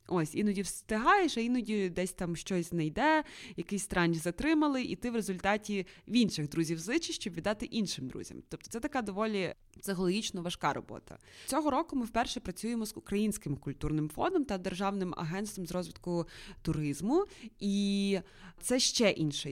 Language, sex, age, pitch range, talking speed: Ukrainian, female, 20-39, 170-230 Hz, 155 wpm